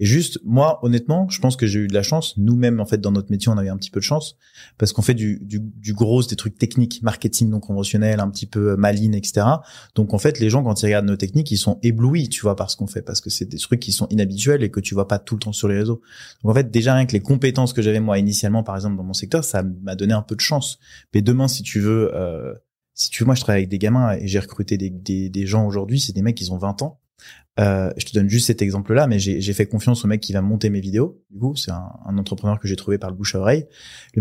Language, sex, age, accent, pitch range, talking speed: French, male, 20-39, French, 100-125 Hz, 300 wpm